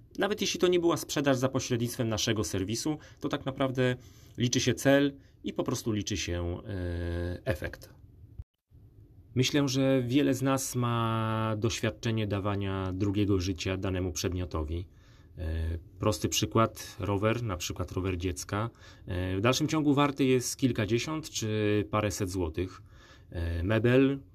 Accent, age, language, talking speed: native, 30-49, Polish, 125 wpm